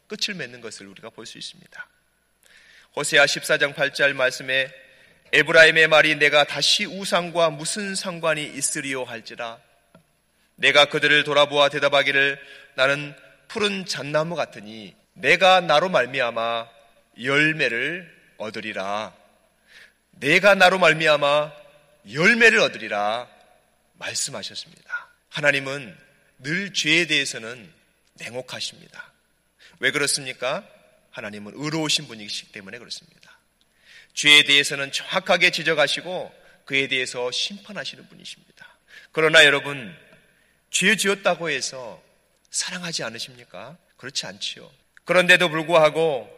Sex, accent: male, native